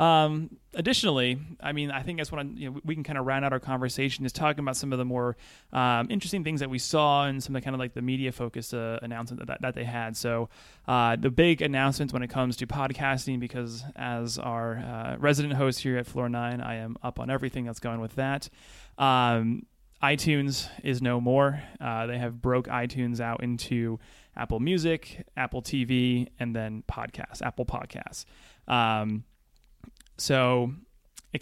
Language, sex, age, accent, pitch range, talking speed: English, male, 30-49, American, 115-135 Hz, 195 wpm